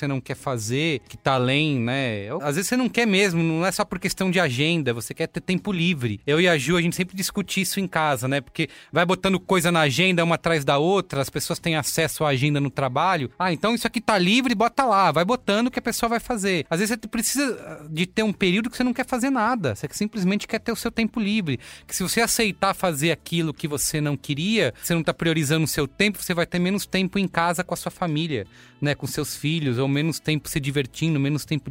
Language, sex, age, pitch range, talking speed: Portuguese, male, 30-49, 145-185 Hz, 255 wpm